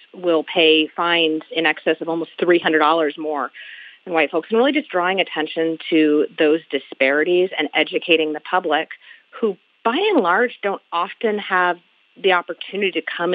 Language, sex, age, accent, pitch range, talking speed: English, female, 30-49, American, 155-195 Hz, 155 wpm